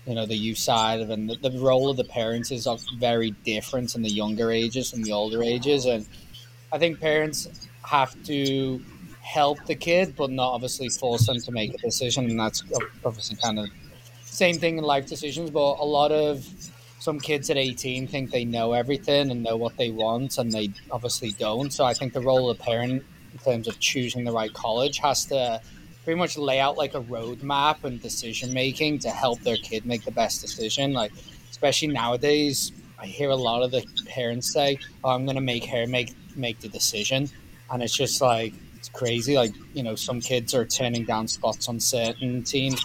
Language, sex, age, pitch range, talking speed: English, male, 20-39, 115-140 Hz, 205 wpm